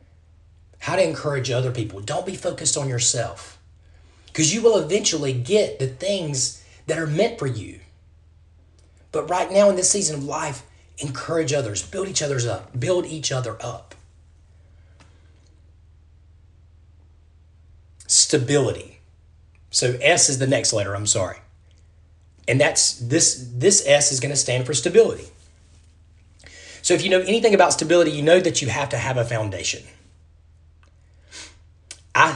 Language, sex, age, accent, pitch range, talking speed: English, male, 30-49, American, 85-135 Hz, 145 wpm